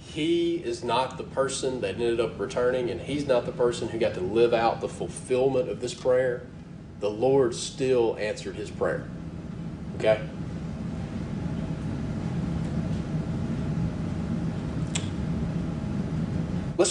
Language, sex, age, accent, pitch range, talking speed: English, male, 30-49, American, 125-175 Hz, 115 wpm